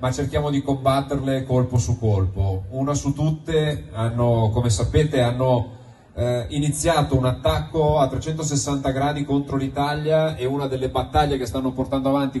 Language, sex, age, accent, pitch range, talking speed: Italian, male, 30-49, native, 120-145 Hz, 145 wpm